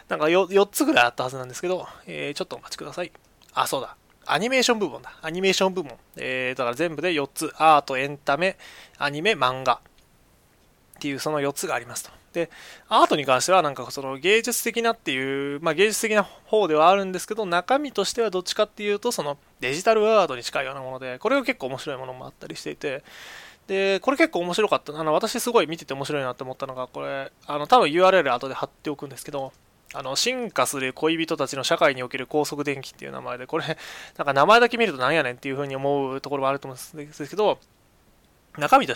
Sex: male